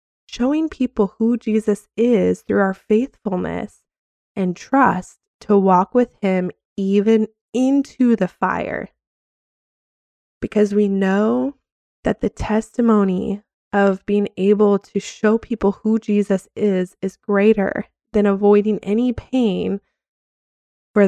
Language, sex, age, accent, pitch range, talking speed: English, female, 20-39, American, 200-245 Hz, 115 wpm